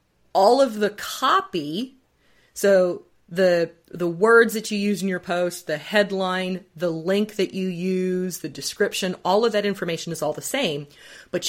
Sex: female